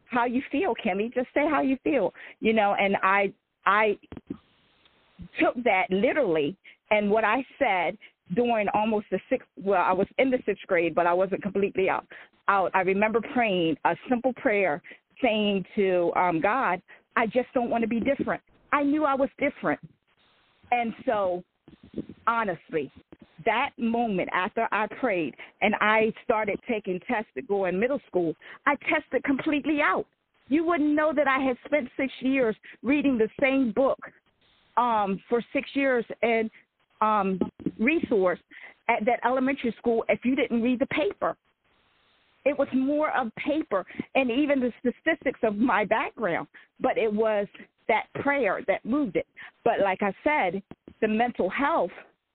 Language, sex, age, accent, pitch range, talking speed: English, female, 40-59, American, 200-265 Hz, 160 wpm